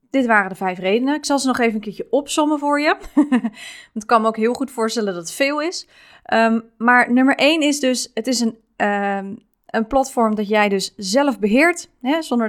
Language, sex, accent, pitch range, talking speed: Dutch, female, Dutch, 195-255 Hz, 205 wpm